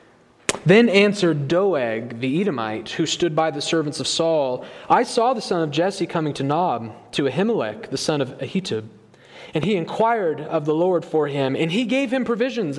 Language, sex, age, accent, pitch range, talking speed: English, male, 30-49, American, 155-205 Hz, 190 wpm